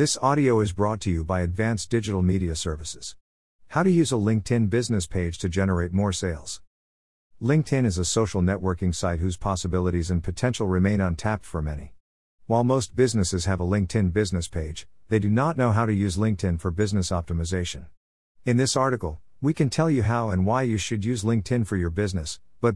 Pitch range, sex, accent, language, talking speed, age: 90-120 Hz, male, American, English, 190 wpm, 50-69